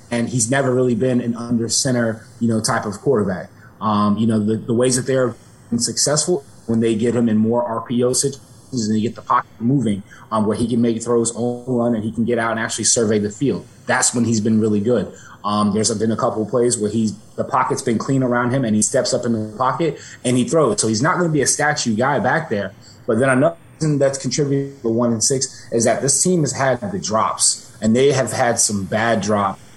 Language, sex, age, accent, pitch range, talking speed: English, male, 30-49, American, 115-135 Hz, 245 wpm